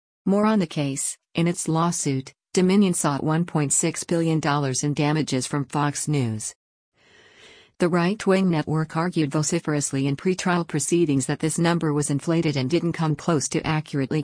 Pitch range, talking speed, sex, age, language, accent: 145-170 Hz, 150 wpm, female, 50-69, English, American